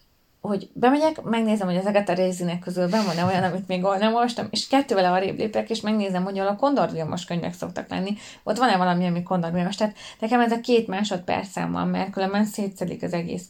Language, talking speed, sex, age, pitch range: English, 200 wpm, female, 20-39, 180-215 Hz